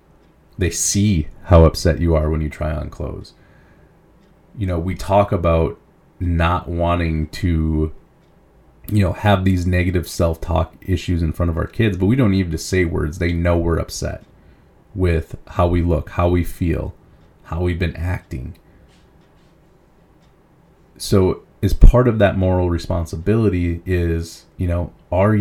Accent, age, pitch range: American, 30-49, 80-95 Hz